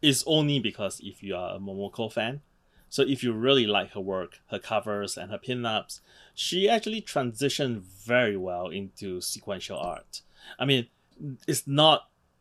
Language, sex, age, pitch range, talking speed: English, male, 20-39, 105-140 Hz, 160 wpm